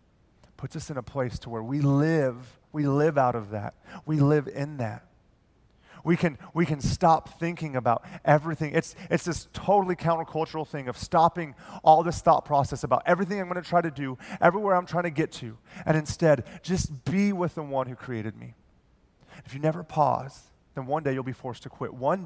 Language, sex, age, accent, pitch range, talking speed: English, male, 30-49, American, 125-155 Hz, 200 wpm